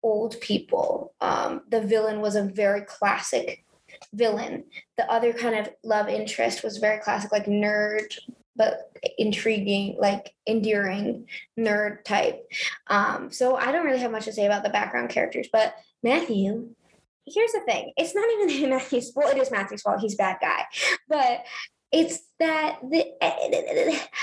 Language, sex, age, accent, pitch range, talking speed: English, female, 20-39, American, 230-325 Hz, 150 wpm